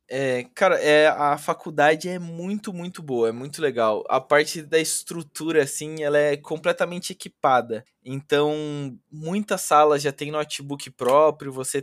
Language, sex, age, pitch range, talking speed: Portuguese, male, 20-39, 135-175 Hz, 145 wpm